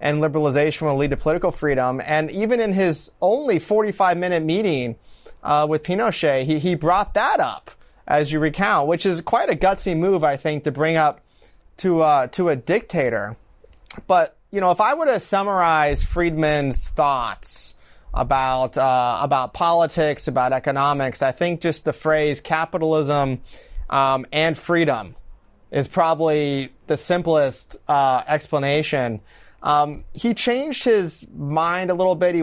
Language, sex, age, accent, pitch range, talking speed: English, male, 30-49, American, 140-165 Hz, 150 wpm